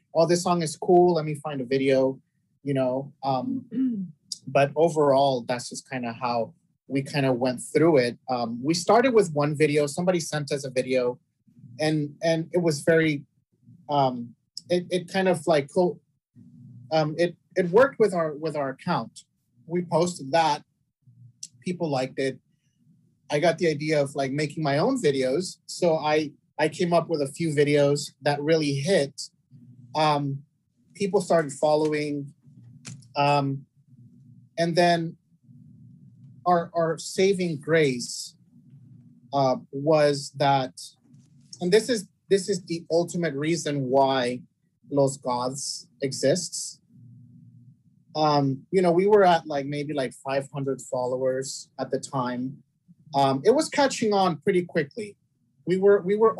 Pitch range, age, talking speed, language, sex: 135-170 Hz, 30-49, 145 wpm, English, male